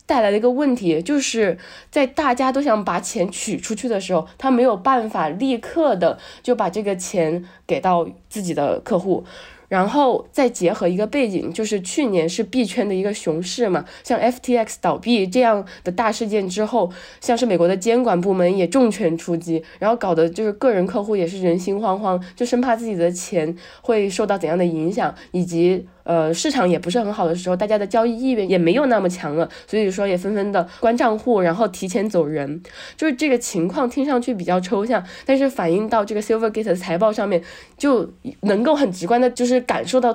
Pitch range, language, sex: 180-245 Hz, Chinese, female